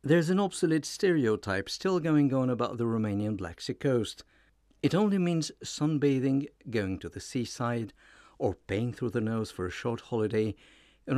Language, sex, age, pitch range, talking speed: English, male, 60-79, 100-140 Hz, 165 wpm